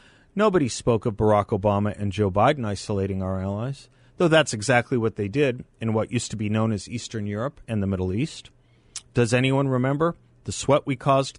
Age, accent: 40-59, American